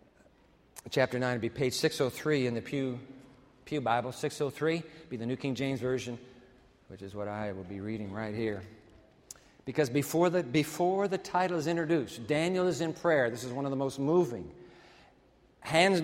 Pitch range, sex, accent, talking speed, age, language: 135-200 Hz, male, American, 175 wpm, 50-69, English